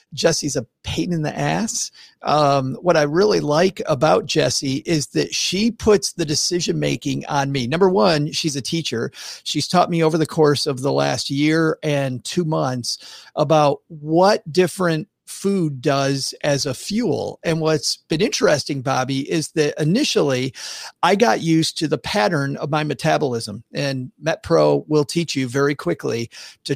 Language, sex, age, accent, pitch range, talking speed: English, male, 40-59, American, 140-170 Hz, 160 wpm